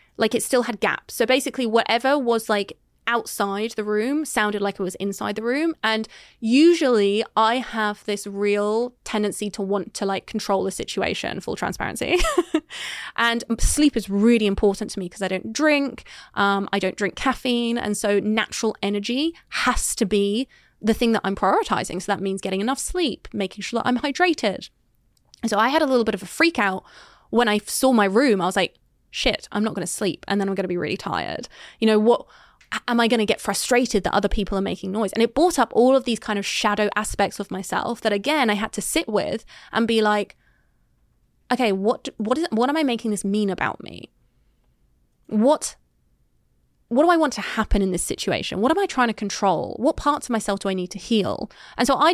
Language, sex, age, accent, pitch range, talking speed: English, female, 20-39, British, 200-245 Hz, 215 wpm